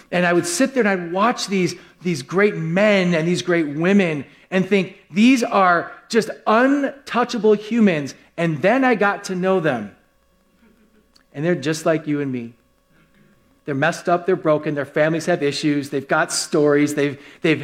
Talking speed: 175 wpm